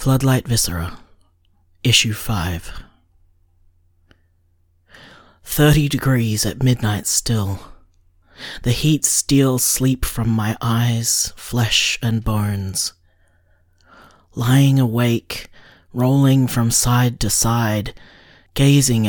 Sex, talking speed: male, 85 wpm